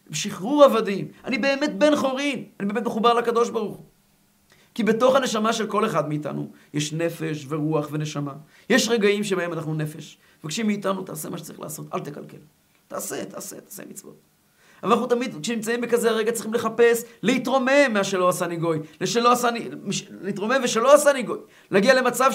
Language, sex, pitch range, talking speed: Hebrew, male, 170-235 Hz, 160 wpm